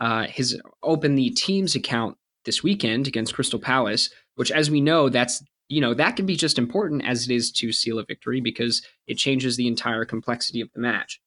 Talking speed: 210 wpm